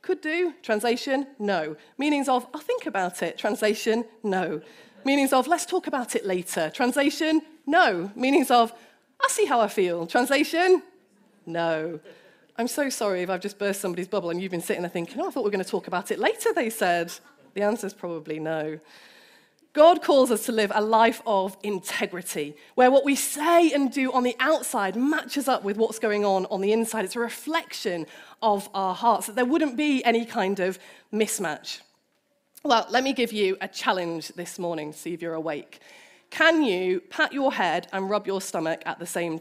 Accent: British